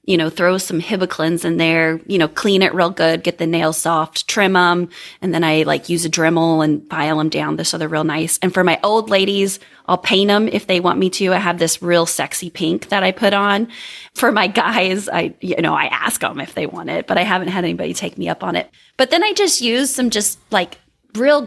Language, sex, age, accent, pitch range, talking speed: English, female, 20-39, American, 175-235 Hz, 250 wpm